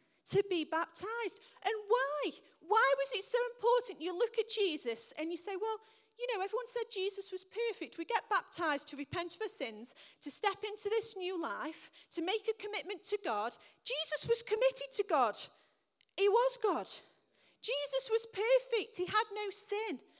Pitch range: 345-450 Hz